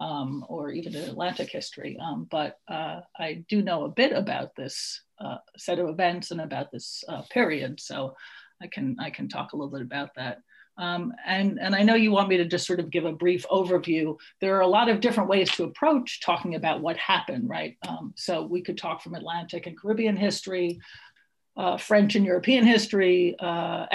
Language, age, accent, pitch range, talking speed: English, 50-69, American, 170-205 Hz, 205 wpm